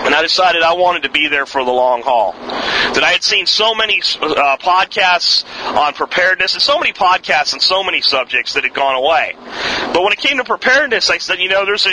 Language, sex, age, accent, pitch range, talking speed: English, male, 40-59, American, 150-190 Hz, 225 wpm